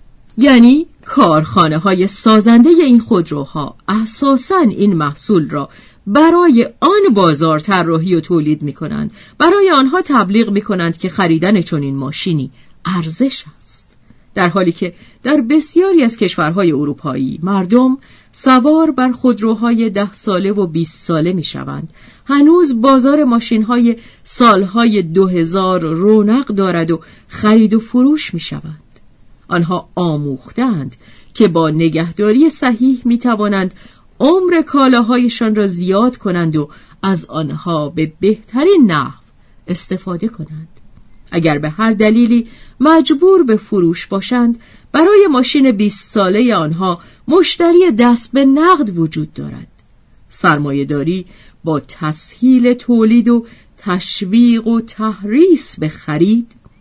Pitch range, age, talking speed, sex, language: 165-245 Hz, 40-59, 120 wpm, female, Persian